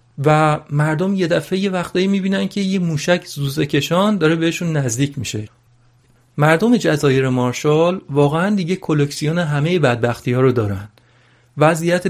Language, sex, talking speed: Persian, male, 140 wpm